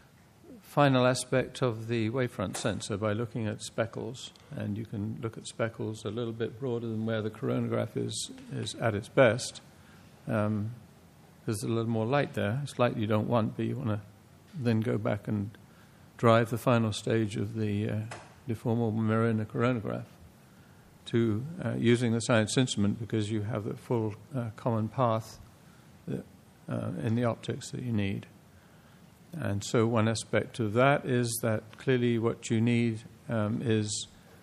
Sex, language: male, English